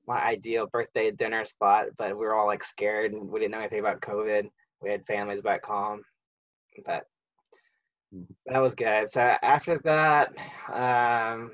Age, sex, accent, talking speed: 20-39, male, American, 160 wpm